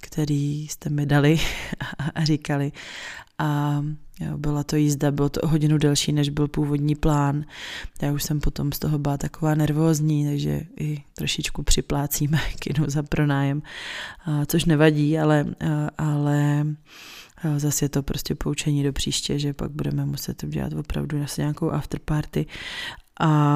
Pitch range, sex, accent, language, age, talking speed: 145-155 Hz, female, native, Czech, 20-39, 150 wpm